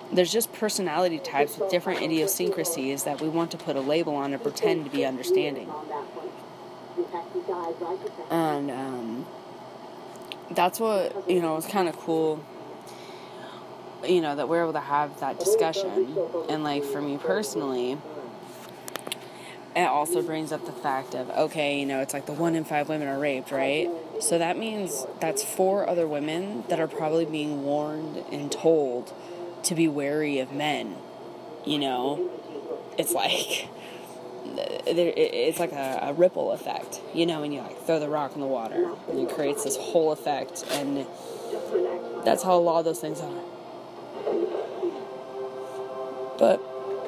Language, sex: English, female